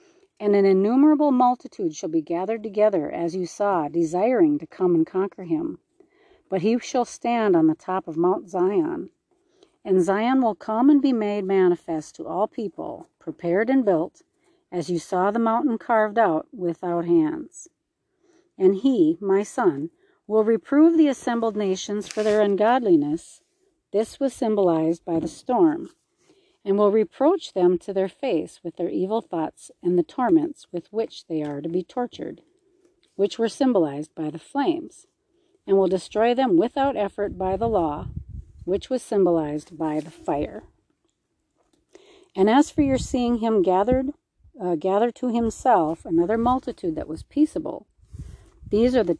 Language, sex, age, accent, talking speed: English, female, 50-69, American, 155 wpm